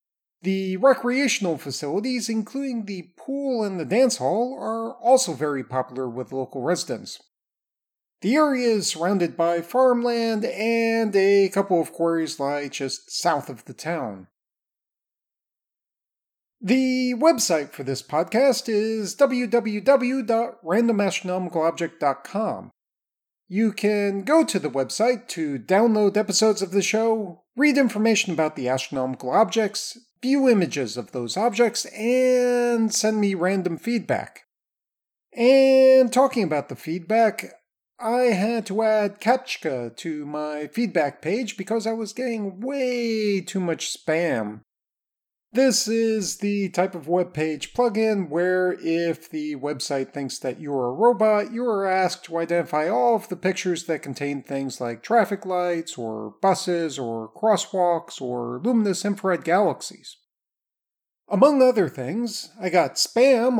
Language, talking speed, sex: English, 130 wpm, male